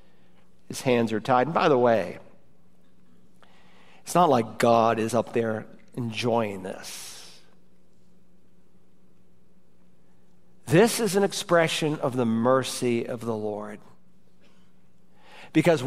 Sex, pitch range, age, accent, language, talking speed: male, 135-195 Hz, 50-69, American, English, 105 wpm